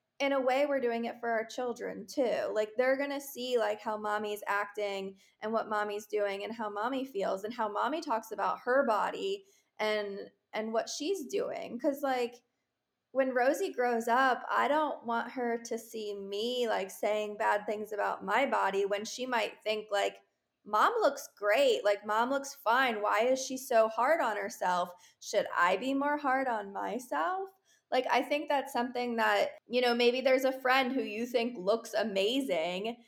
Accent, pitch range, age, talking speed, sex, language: American, 215-265 Hz, 20-39, 185 wpm, female, English